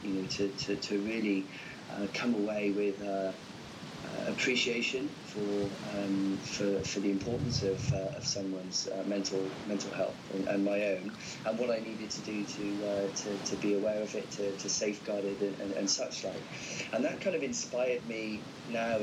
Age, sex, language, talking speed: 20-39, male, English, 185 wpm